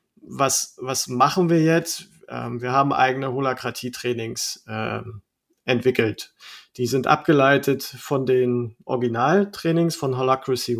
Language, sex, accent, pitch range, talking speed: German, male, German, 125-145 Hz, 100 wpm